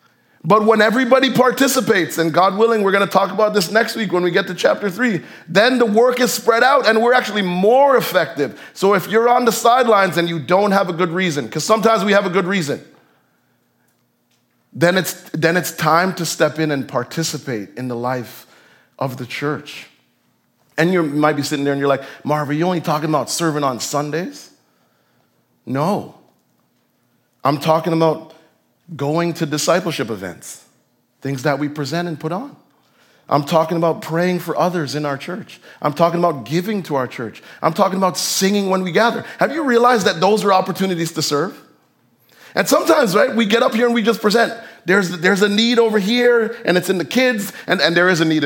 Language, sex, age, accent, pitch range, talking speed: English, male, 30-49, American, 155-225 Hz, 200 wpm